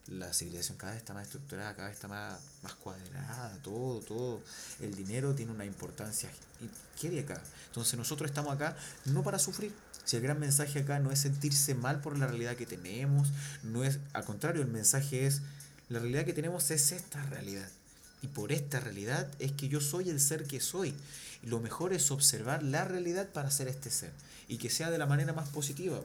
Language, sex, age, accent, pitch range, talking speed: Spanish, male, 30-49, Argentinian, 120-145 Hz, 205 wpm